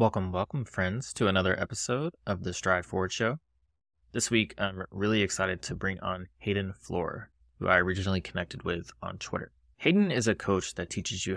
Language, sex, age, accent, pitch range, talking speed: English, male, 20-39, American, 90-100 Hz, 185 wpm